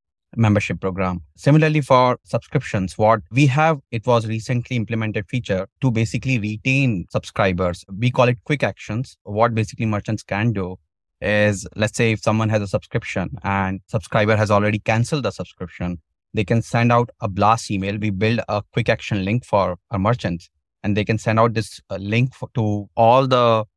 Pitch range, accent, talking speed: 100-120 Hz, Indian, 170 wpm